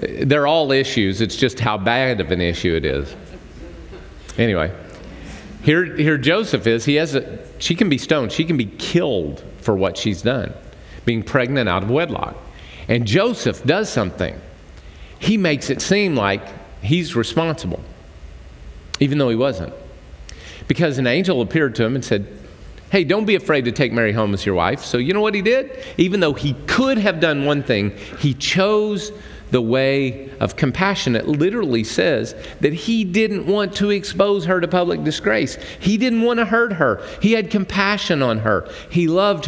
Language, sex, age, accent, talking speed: English, male, 40-59, American, 180 wpm